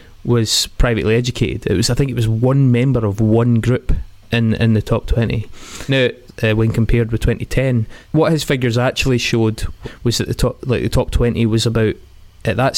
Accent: British